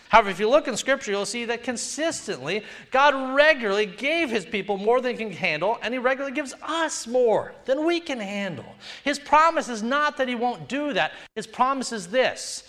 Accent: American